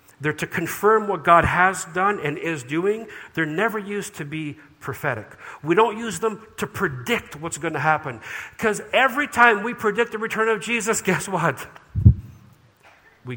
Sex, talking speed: male, 170 wpm